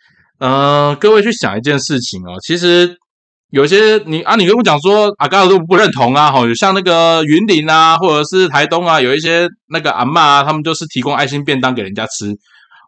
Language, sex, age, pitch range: Chinese, male, 20-39, 105-165 Hz